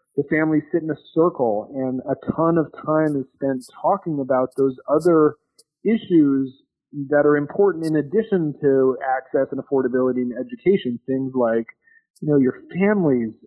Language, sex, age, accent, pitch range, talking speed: English, male, 40-59, American, 130-165 Hz, 155 wpm